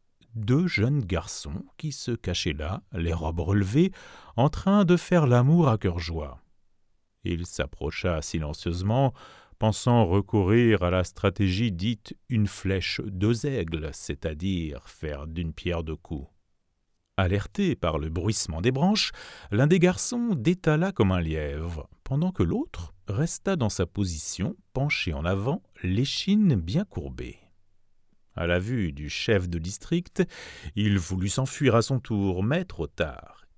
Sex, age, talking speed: male, 40-59, 140 wpm